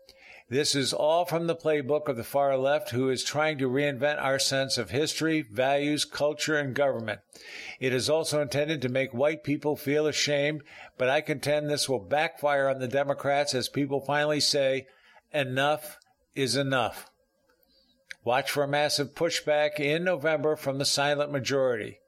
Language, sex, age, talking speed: English, male, 50-69, 165 wpm